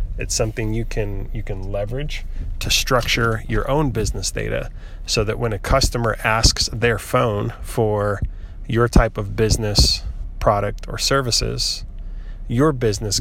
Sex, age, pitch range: male, 20-39, 100-115 Hz